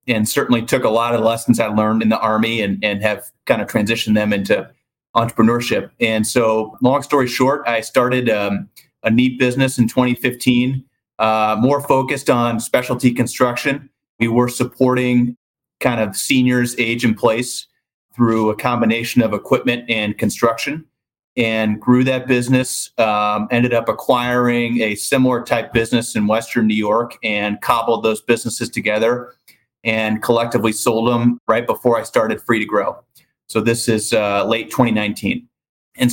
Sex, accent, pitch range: male, American, 110-125 Hz